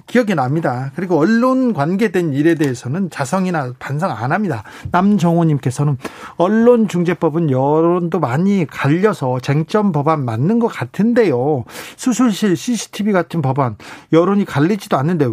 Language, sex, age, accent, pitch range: Korean, male, 40-59, native, 155-215 Hz